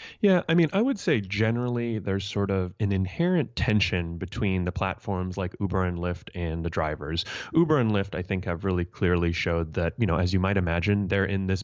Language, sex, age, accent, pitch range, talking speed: English, male, 30-49, American, 90-110 Hz, 215 wpm